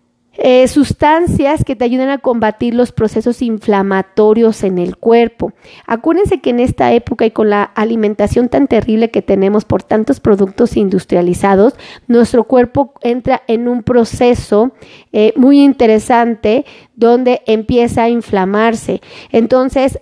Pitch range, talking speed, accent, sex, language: 220-275 Hz, 130 wpm, Mexican, female, Spanish